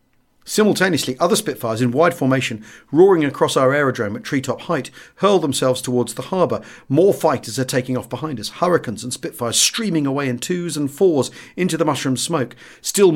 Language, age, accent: English, 40-59, British